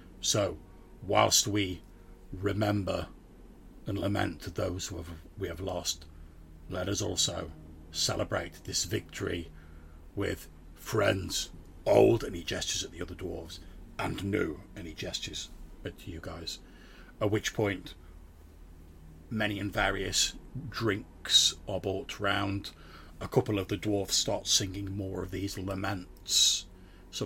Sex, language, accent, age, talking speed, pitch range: male, English, British, 40-59, 125 wpm, 90-100 Hz